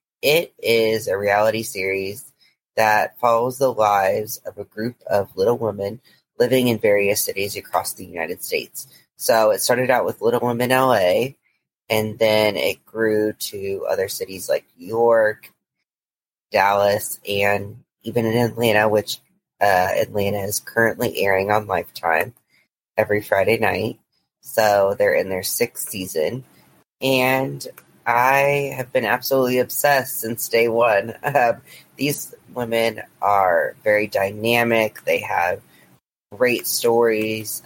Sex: female